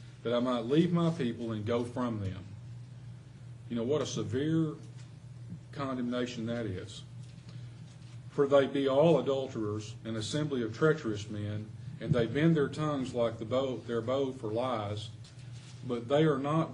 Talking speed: 150 wpm